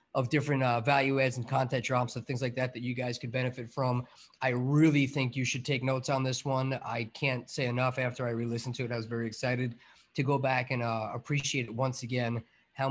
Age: 30-49